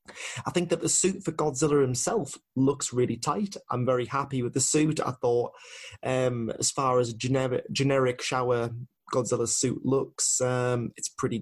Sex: male